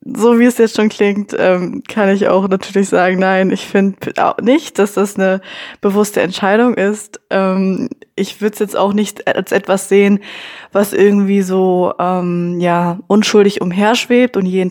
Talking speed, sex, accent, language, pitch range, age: 170 wpm, female, German, German, 185-210 Hz, 20-39